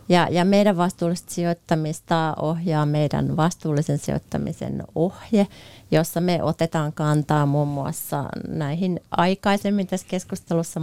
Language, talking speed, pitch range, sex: Finnish, 110 wpm, 150-175 Hz, female